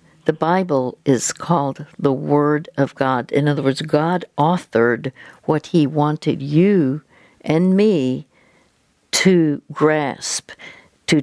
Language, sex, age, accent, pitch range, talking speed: English, female, 60-79, American, 140-165 Hz, 120 wpm